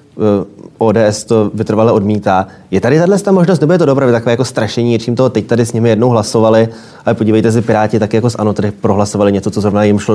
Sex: male